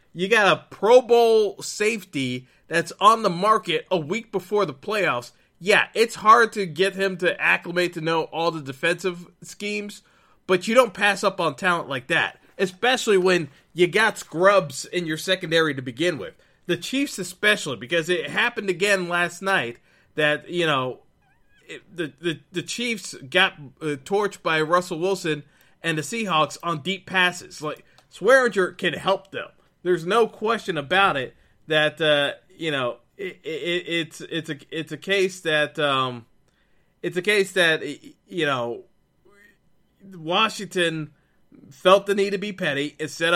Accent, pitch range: American, 155-200 Hz